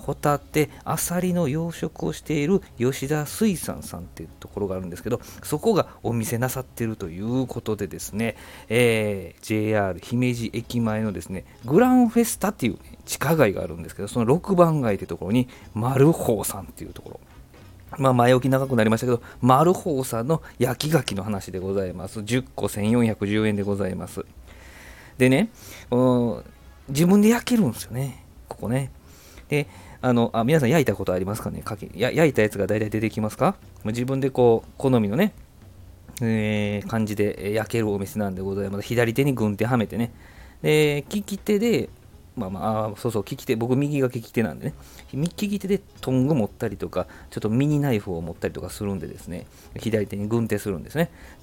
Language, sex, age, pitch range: Japanese, male, 40-59, 100-135 Hz